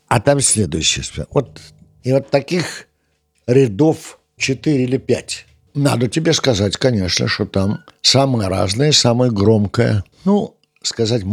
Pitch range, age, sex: 90-135 Hz, 60-79, male